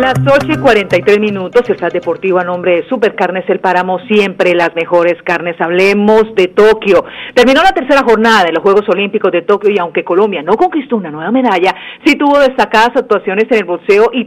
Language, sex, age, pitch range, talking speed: Spanish, female, 40-59, 190-240 Hz, 205 wpm